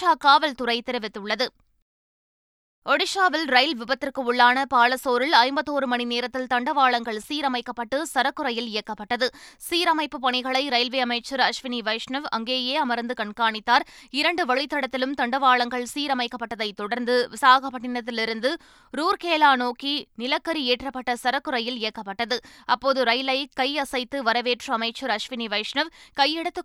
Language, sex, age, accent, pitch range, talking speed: Tamil, female, 20-39, native, 235-280 Hz, 100 wpm